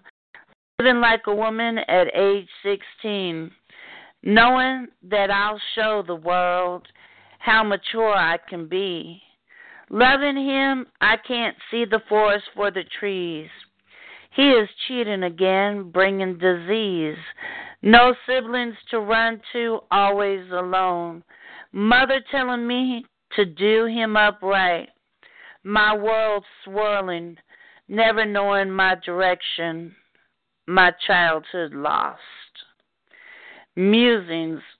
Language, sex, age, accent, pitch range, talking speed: English, female, 50-69, American, 185-240 Hz, 100 wpm